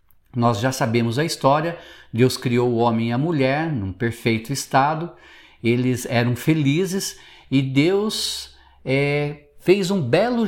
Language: Portuguese